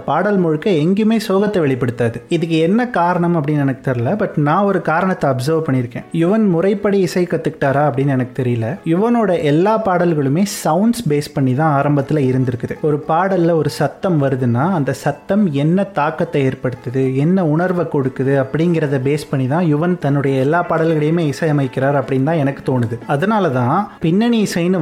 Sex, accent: male, native